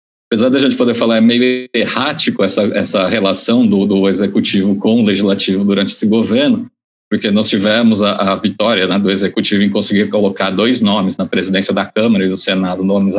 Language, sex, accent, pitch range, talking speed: Portuguese, male, Brazilian, 105-175 Hz, 195 wpm